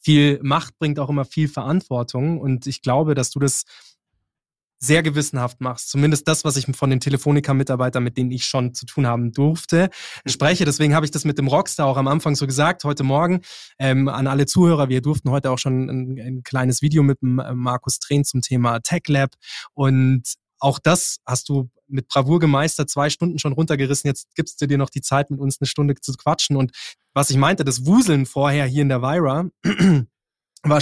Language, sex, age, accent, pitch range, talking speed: German, male, 20-39, German, 130-150 Hz, 200 wpm